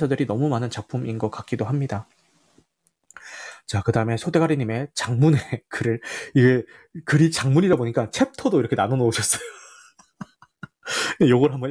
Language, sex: Korean, male